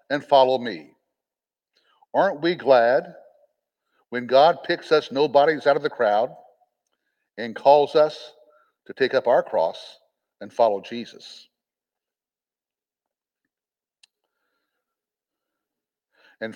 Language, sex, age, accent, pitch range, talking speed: English, male, 60-79, American, 140-220 Hz, 100 wpm